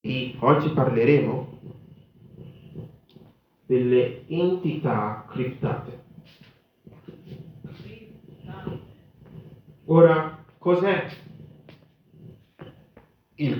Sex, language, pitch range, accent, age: male, Italian, 130-170 Hz, native, 40-59